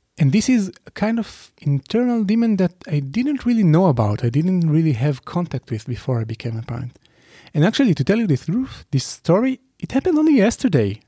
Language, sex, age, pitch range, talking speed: English, male, 30-49, 125-165 Hz, 205 wpm